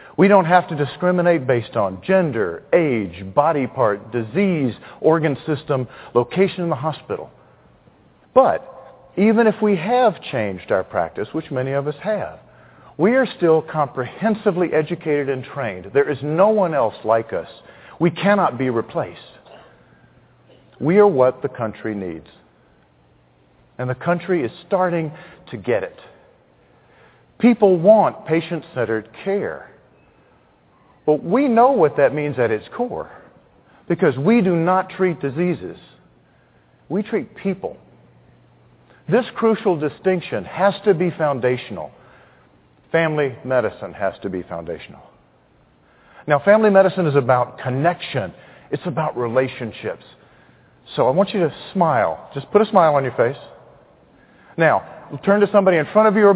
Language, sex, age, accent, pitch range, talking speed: English, male, 50-69, American, 130-195 Hz, 135 wpm